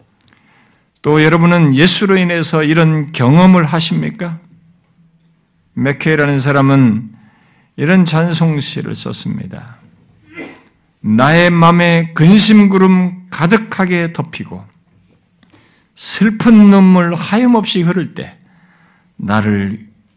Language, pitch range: Korean, 145-195 Hz